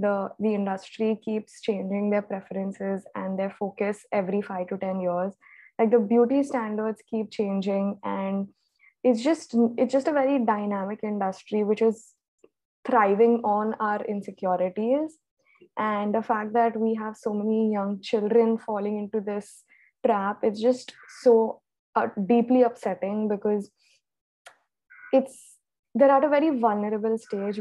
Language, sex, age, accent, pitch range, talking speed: English, female, 20-39, Indian, 195-225 Hz, 140 wpm